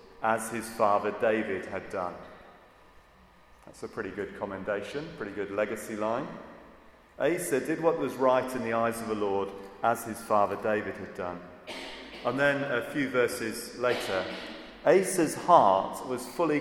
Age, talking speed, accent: 40-59, 150 wpm, British